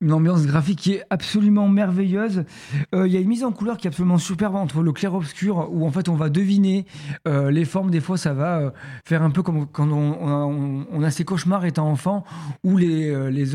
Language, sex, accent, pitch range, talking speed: French, male, French, 150-190 Hz, 245 wpm